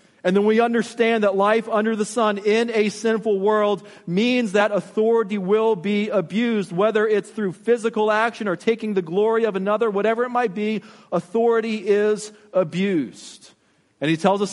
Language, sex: English, male